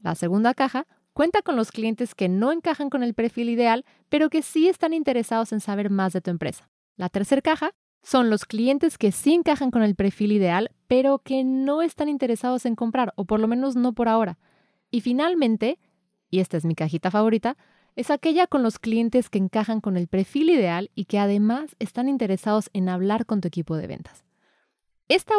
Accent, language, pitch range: Mexican, Spanish, 190-265 Hz